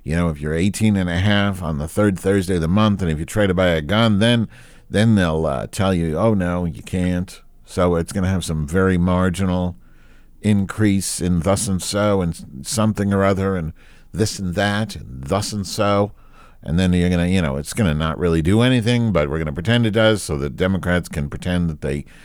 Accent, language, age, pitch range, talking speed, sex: American, English, 50-69, 85-105 Hz, 230 wpm, male